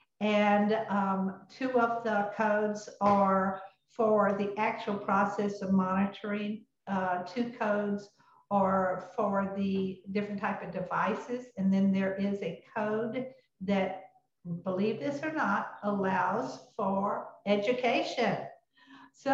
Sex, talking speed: female, 120 wpm